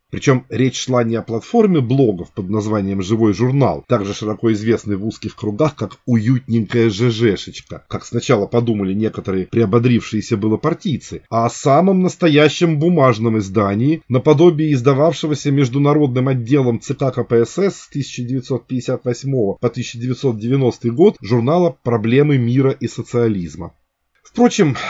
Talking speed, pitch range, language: 120 wpm, 115-165 Hz, Russian